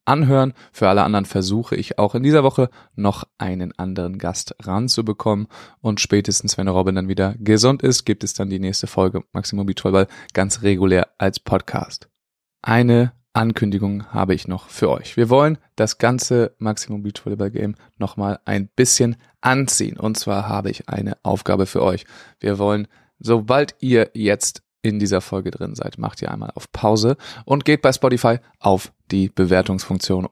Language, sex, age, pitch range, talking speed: German, male, 20-39, 95-115 Hz, 165 wpm